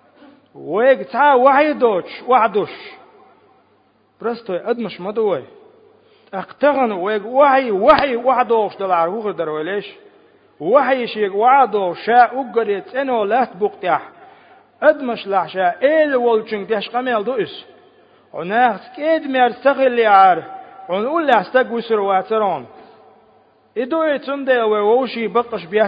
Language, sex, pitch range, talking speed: Russian, male, 205-265 Hz, 55 wpm